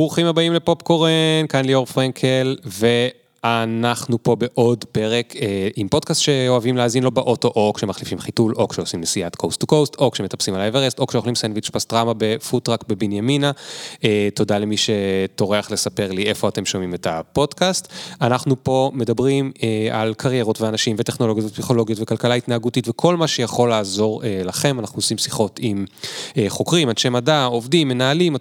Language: Hebrew